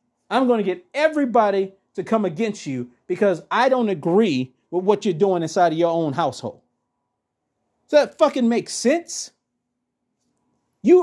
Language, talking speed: English, 150 wpm